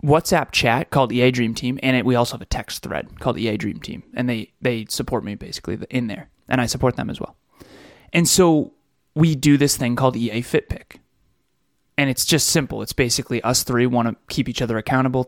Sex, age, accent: male, 20-39, American